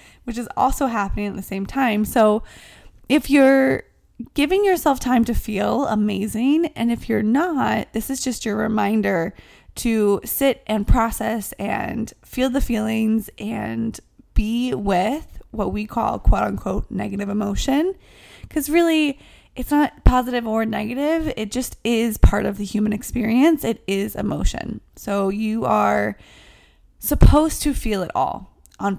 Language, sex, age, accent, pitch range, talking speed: English, female, 20-39, American, 210-260 Hz, 145 wpm